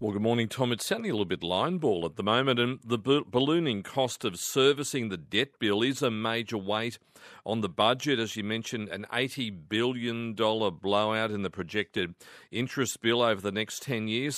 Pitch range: 100-125 Hz